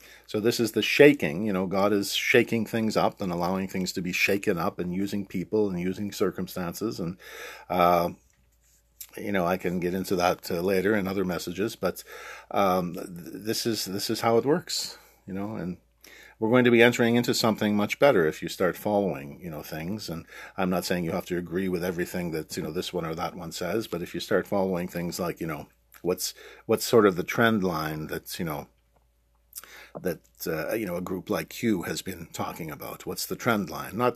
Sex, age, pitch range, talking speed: male, 50-69, 90-110 Hz, 220 wpm